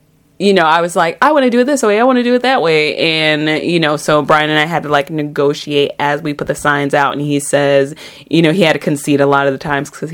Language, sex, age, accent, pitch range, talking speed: English, female, 30-49, American, 145-195 Hz, 300 wpm